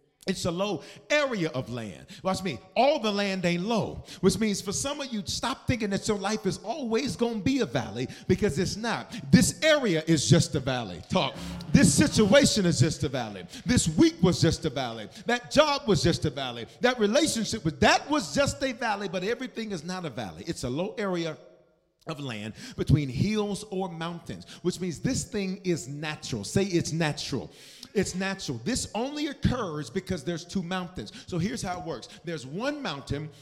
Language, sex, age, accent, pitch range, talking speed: English, male, 40-59, American, 160-220 Hz, 195 wpm